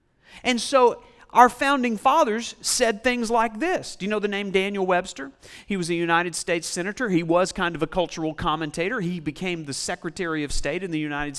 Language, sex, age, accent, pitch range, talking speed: English, male, 40-59, American, 165-230 Hz, 200 wpm